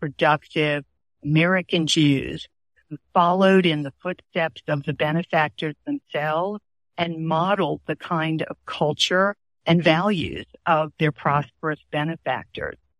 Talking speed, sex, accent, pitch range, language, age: 110 wpm, female, American, 150-185 Hz, English, 60-79